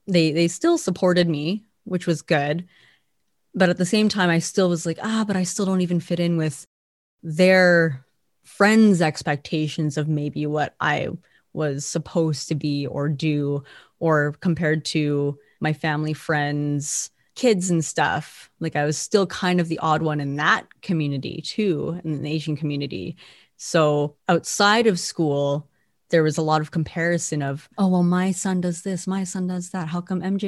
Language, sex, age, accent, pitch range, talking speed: English, female, 30-49, American, 150-185 Hz, 175 wpm